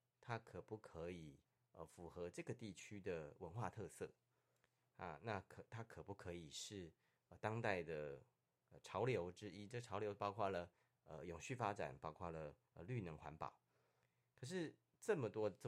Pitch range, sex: 85-120 Hz, male